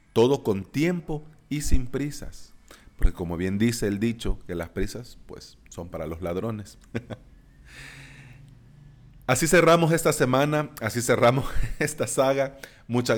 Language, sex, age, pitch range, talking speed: Spanish, male, 40-59, 95-130 Hz, 130 wpm